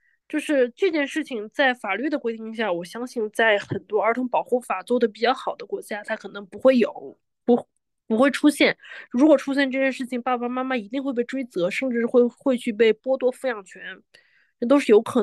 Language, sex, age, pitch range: Chinese, female, 20-39, 220-280 Hz